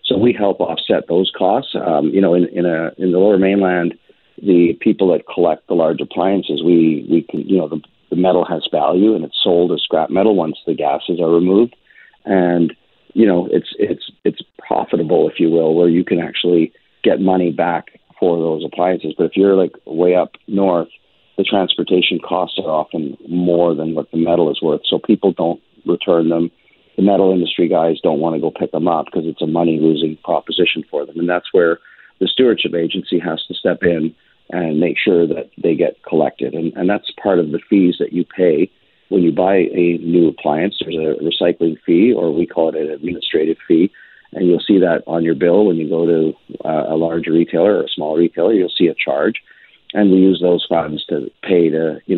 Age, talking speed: 40-59, 210 wpm